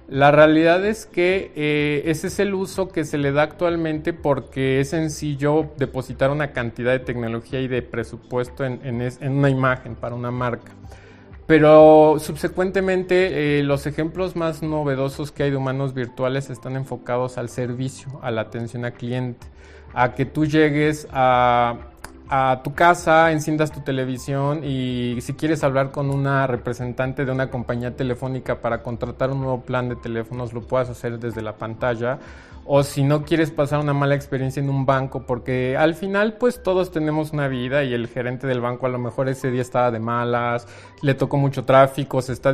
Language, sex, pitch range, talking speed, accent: Spanish, male, 125-150 Hz, 180 wpm, Mexican